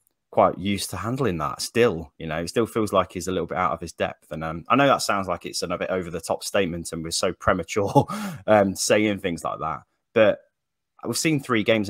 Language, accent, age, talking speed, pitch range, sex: English, British, 20-39, 240 wpm, 85-110 Hz, male